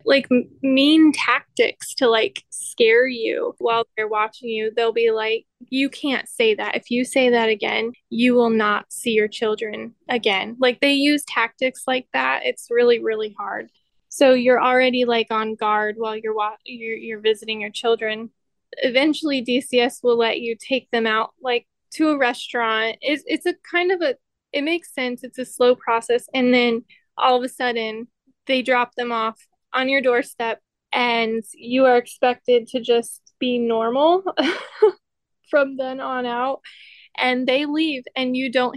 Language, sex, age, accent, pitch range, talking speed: English, female, 20-39, American, 225-270 Hz, 170 wpm